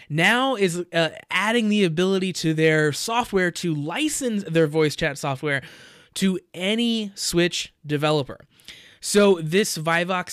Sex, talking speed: male, 130 wpm